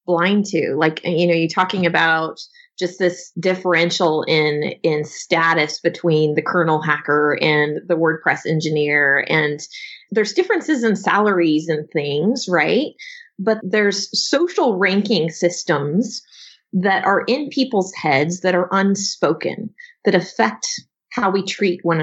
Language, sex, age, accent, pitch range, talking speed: English, female, 30-49, American, 170-210 Hz, 135 wpm